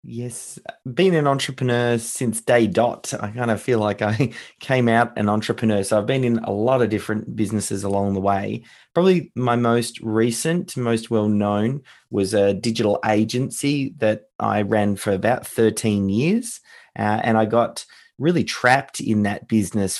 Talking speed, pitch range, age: 170 wpm, 105-120 Hz, 20-39